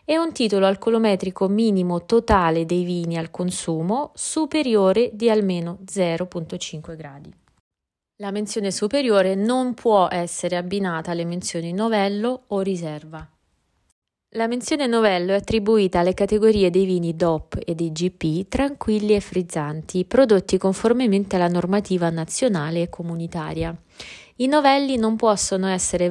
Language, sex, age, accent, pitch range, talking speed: Italian, female, 20-39, native, 170-220 Hz, 125 wpm